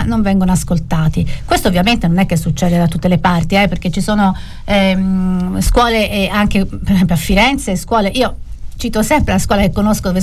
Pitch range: 185-235 Hz